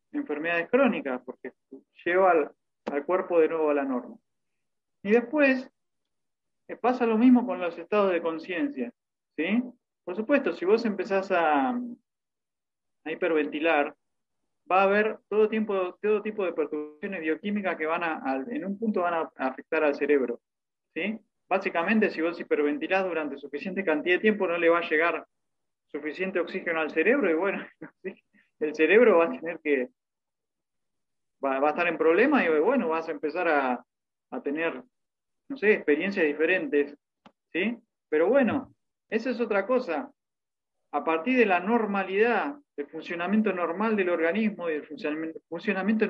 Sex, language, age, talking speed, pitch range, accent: male, Spanish, 20-39, 155 wpm, 150-220 Hz, Argentinian